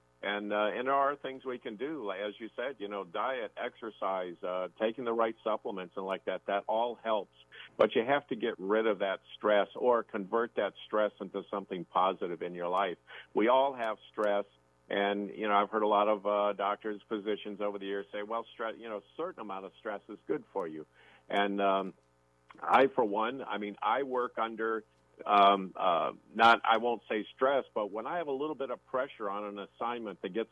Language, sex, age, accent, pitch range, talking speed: English, male, 50-69, American, 95-115 Hz, 215 wpm